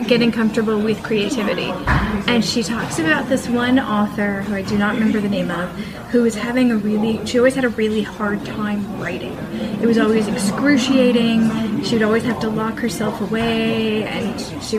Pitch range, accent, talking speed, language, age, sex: 210-245 Hz, American, 185 wpm, English, 10-29, female